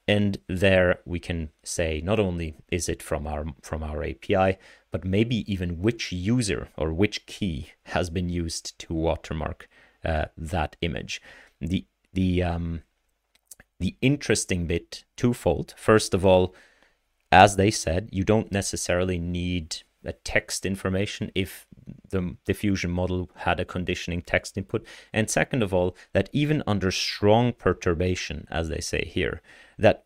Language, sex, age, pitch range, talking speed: English, male, 30-49, 85-110 Hz, 145 wpm